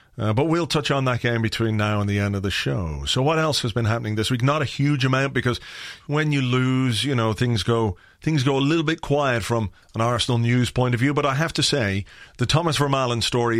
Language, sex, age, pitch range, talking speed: English, male, 40-59, 110-140 Hz, 250 wpm